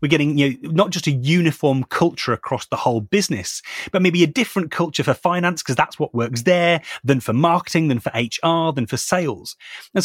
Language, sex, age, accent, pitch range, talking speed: English, male, 30-49, British, 135-190 Hz, 210 wpm